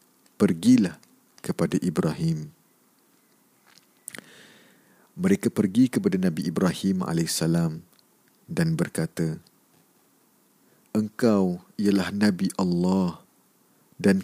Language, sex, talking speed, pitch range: Malay, male, 65 wpm, 85-120 Hz